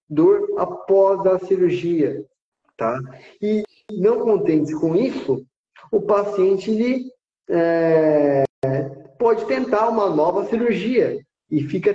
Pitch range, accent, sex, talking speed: 160-255 Hz, Brazilian, male, 90 wpm